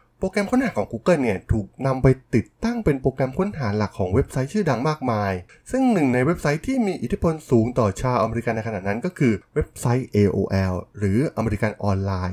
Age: 20-39